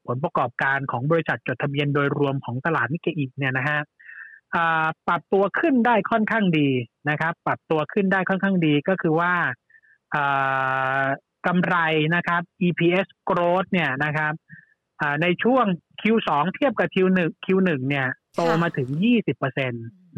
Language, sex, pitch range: Thai, male, 145-185 Hz